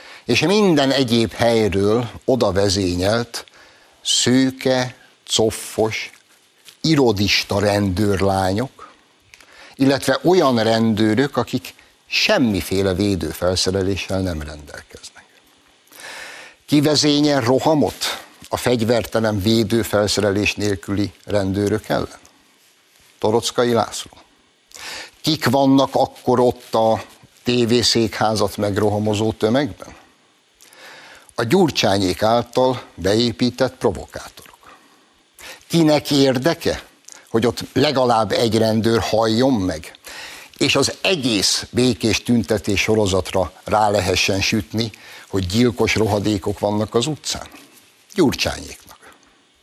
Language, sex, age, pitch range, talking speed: Hungarian, male, 60-79, 100-125 Hz, 80 wpm